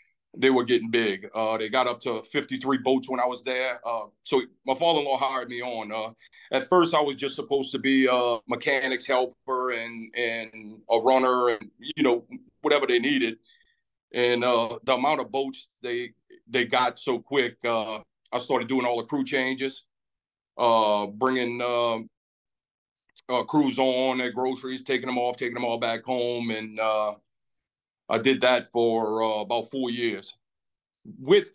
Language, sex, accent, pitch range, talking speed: English, male, American, 115-135 Hz, 170 wpm